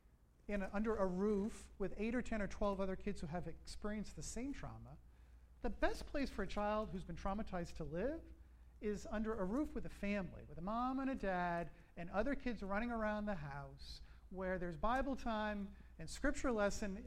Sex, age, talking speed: male, 40-59, 195 wpm